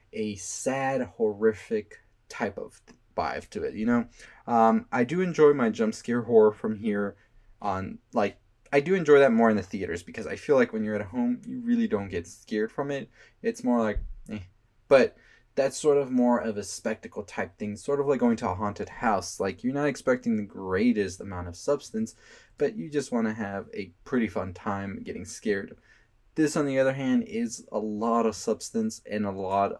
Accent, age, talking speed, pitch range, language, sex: American, 20-39, 205 wpm, 105-155 Hz, English, male